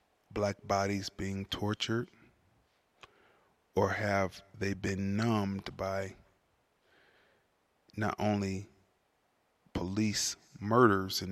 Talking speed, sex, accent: 80 wpm, male, American